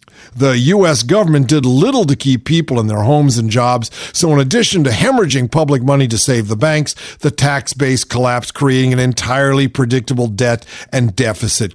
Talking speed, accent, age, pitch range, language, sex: 180 wpm, American, 50-69, 115-155 Hz, English, male